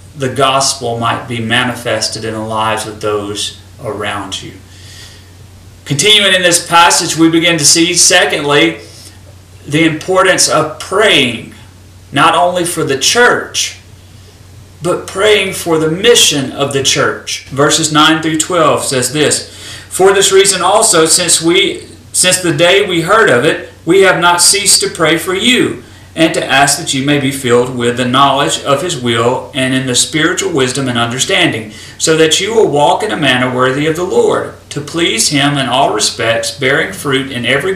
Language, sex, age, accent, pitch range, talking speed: English, male, 40-59, American, 110-165 Hz, 170 wpm